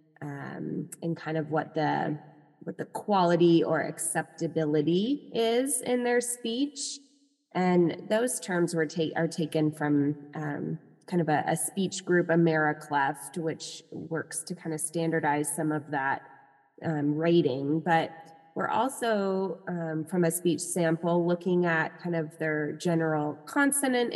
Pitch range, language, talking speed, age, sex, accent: 155-185 Hz, English, 140 wpm, 20-39, female, American